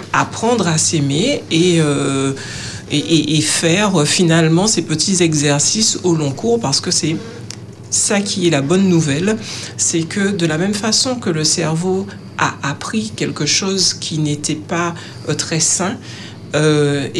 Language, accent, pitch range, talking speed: French, French, 145-185 Hz, 160 wpm